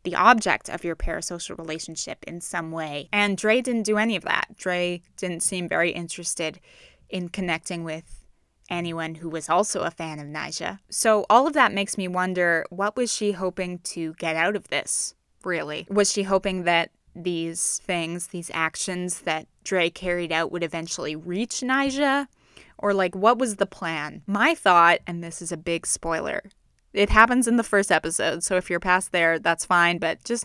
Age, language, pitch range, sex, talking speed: 20-39, English, 170-200 Hz, female, 185 wpm